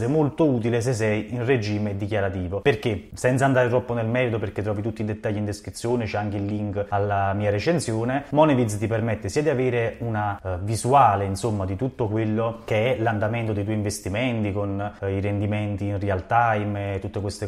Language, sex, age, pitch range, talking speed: Italian, male, 20-39, 105-130 Hz, 185 wpm